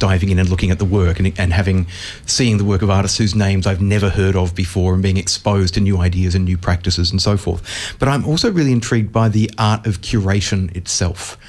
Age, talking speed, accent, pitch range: 30-49, 235 wpm, Australian, 95-115 Hz